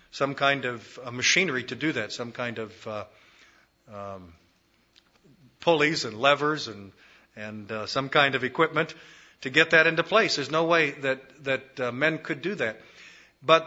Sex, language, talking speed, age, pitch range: male, English, 165 wpm, 50-69, 135-175 Hz